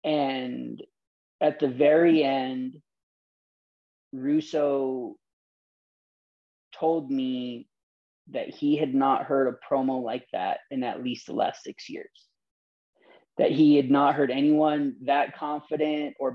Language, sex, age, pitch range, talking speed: English, male, 30-49, 125-150 Hz, 120 wpm